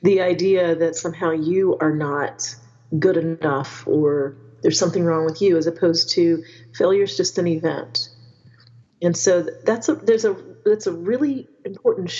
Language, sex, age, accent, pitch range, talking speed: English, female, 40-59, American, 165-195 Hz, 155 wpm